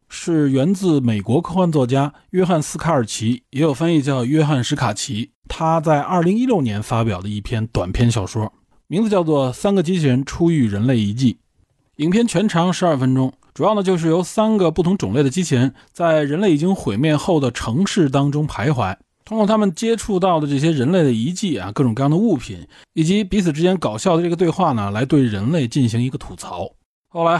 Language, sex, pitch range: Chinese, male, 120-175 Hz